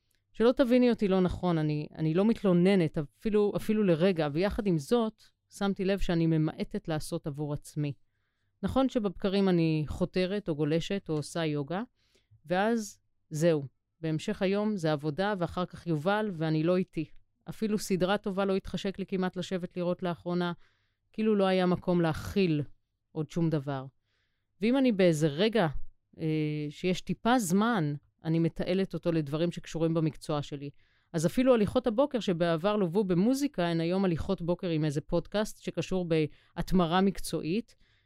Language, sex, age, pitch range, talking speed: Hebrew, female, 30-49, 155-195 Hz, 145 wpm